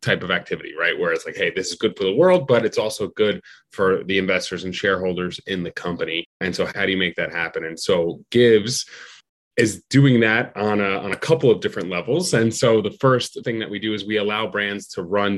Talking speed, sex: 240 wpm, male